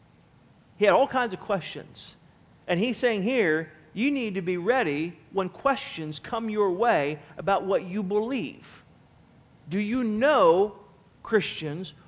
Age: 40-59